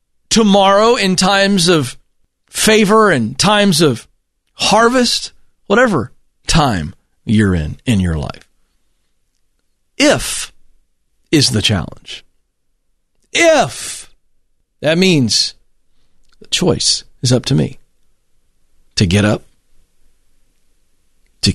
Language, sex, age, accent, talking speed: English, male, 40-59, American, 90 wpm